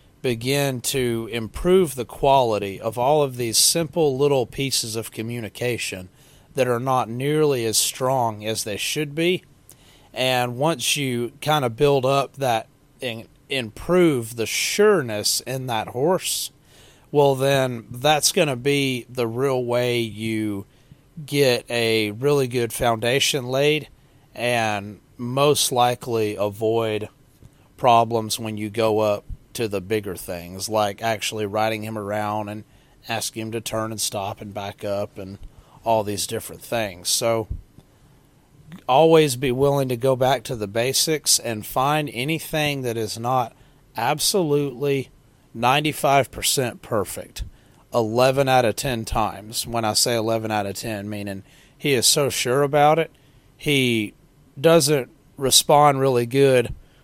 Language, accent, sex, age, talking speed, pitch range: English, American, male, 30-49, 140 wpm, 110-140 Hz